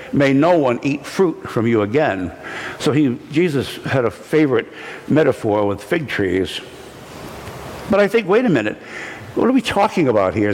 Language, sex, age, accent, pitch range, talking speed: English, male, 60-79, American, 115-165 Hz, 170 wpm